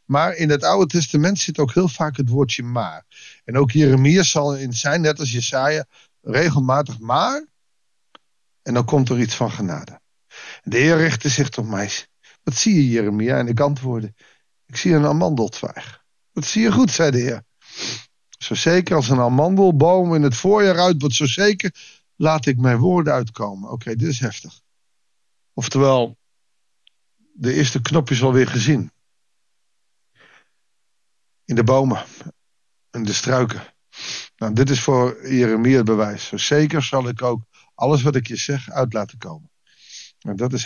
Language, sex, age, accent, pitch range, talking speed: Dutch, male, 50-69, Dutch, 120-155 Hz, 165 wpm